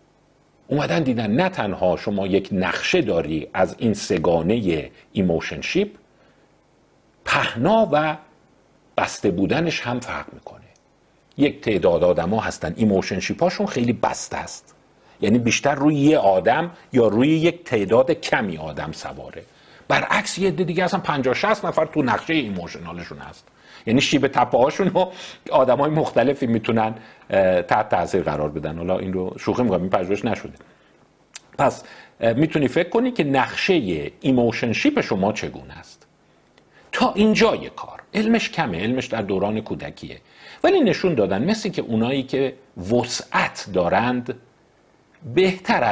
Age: 50-69